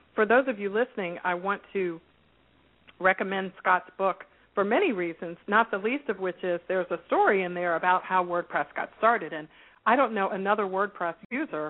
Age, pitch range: 50-69, 170-230 Hz